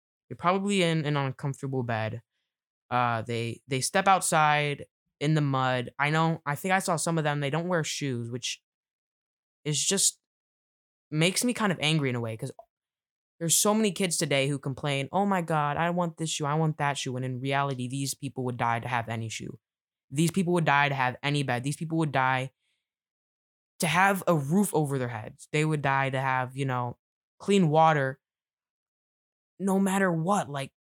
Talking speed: 195 wpm